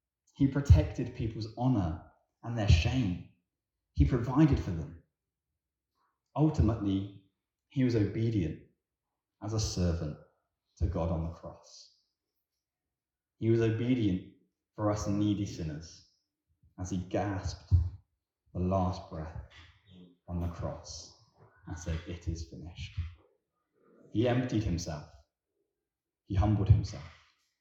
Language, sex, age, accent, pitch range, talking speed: English, male, 30-49, British, 85-100 Hz, 110 wpm